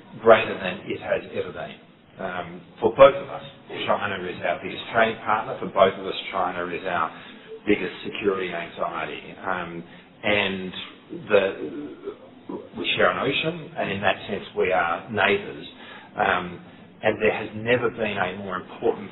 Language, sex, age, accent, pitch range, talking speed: Bengali, male, 40-59, Australian, 120-180 Hz, 155 wpm